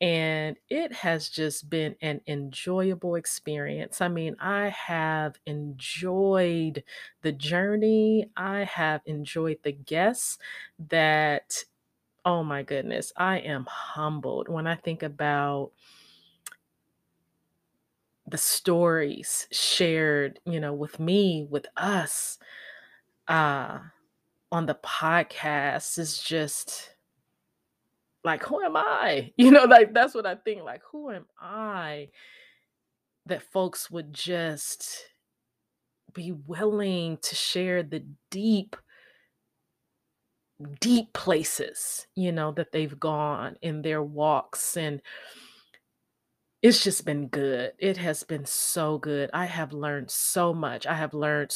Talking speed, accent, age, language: 115 wpm, American, 30-49, English